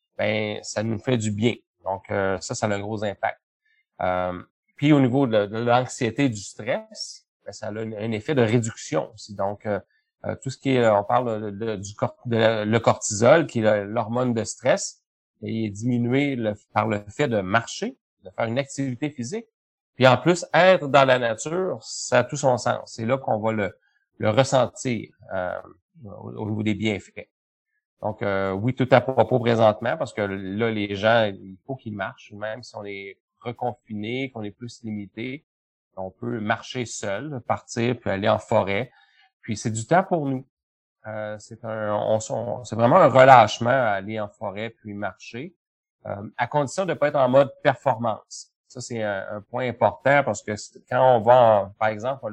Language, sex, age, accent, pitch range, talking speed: French, male, 30-49, Canadian, 105-130 Hz, 195 wpm